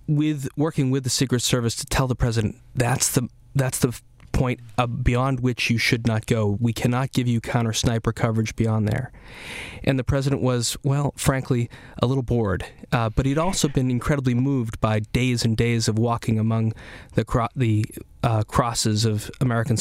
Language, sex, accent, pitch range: English, male, American, 115-130 Hz